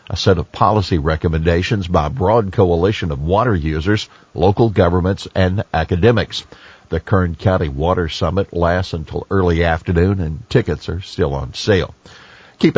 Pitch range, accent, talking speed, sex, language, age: 90-115 Hz, American, 150 wpm, male, English, 50-69